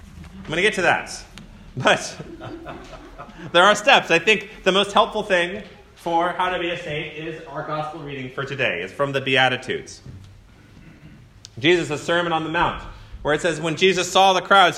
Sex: male